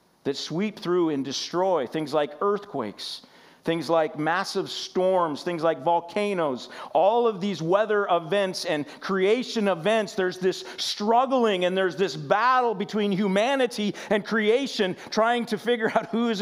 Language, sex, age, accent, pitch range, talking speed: English, male, 50-69, American, 125-195 Hz, 145 wpm